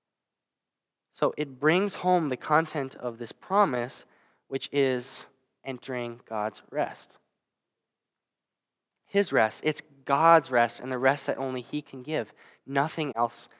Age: 10-29